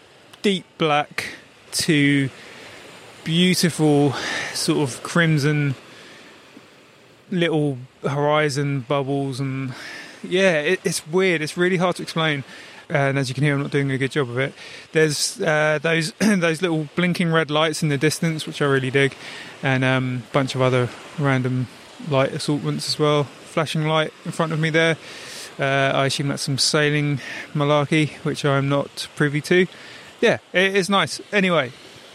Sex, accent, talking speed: male, British, 150 wpm